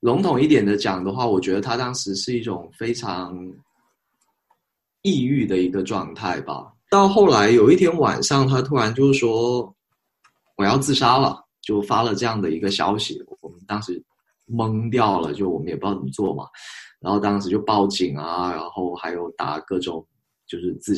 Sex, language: male, Chinese